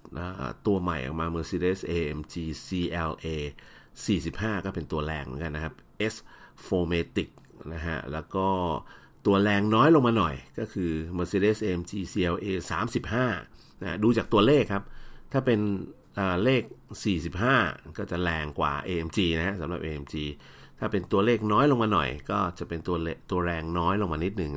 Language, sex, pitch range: Thai, male, 80-100 Hz